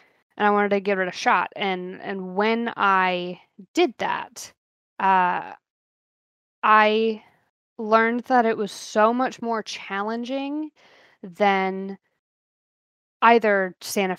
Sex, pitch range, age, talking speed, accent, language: female, 190-230 Hz, 10-29, 115 wpm, American, English